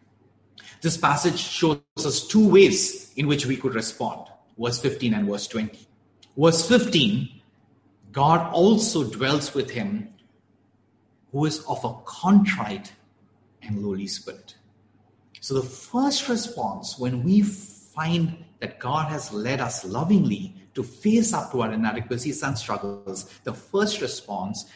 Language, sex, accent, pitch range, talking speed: English, male, Indian, 105-165 Hz, 135 wpm